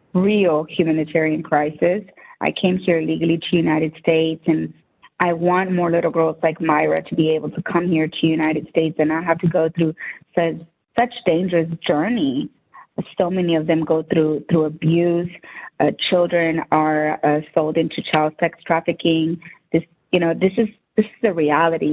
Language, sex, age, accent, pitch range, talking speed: English, female, 20-39, American, 160-185 Hz, 175 wpm